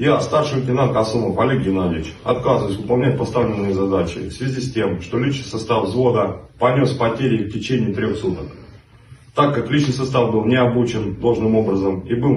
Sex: male